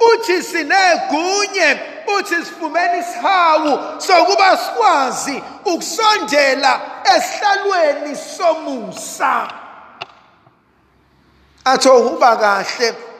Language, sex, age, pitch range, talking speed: English, male, 50-69, 280-375 Hz, 55 wpm